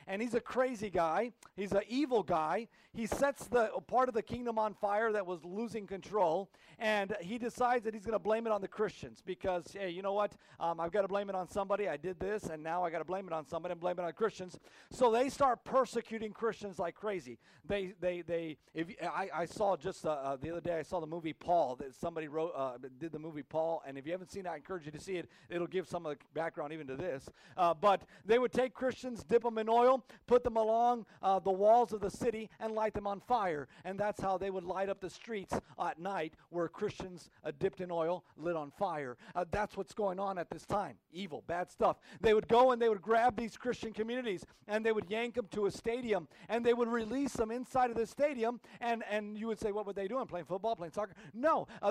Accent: American